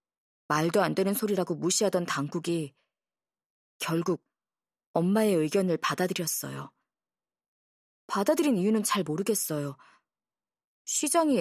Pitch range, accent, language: 170-235 Hz, native, Korean